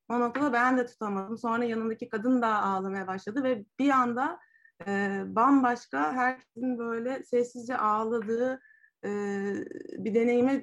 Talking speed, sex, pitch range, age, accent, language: 120 wpm, female, 215-250 Hz, 30-49, native, Turkish